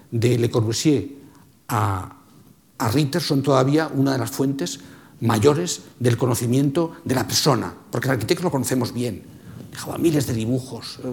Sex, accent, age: male, Spanish, 50-69